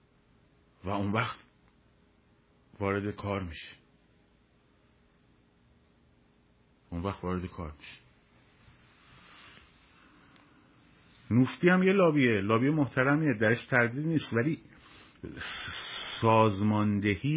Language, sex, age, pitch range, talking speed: Persian, male, 50-69, 90-130 Hz, 75 wpm